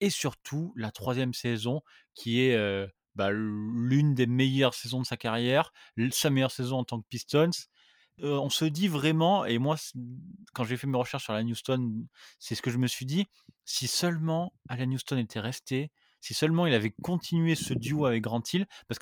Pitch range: 115-140 Hz